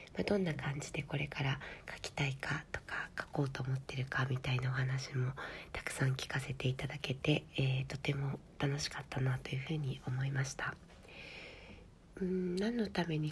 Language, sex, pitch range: Japanese, female, 135-155 Hz